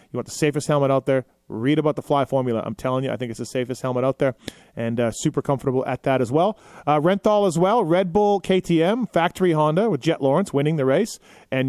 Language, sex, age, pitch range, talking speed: English, male, 30-49, 125-155 Hz, 240 wpm